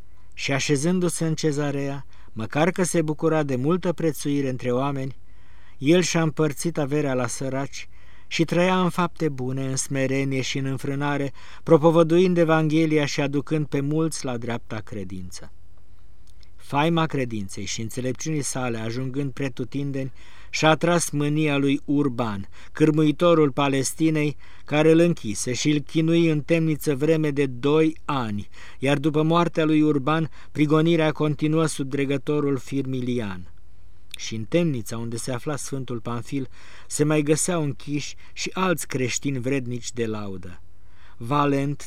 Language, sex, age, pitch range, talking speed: Romanian, male, 50-69, 115-155 Hz, 135 wpm